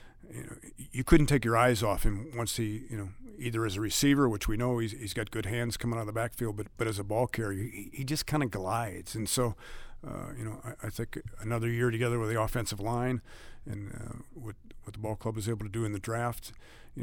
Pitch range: 110-130 Hz